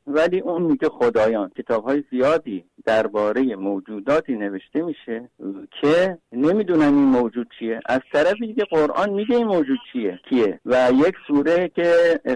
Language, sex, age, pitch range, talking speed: Persian, male, 50-69, 125-170 Hz, 140 wpm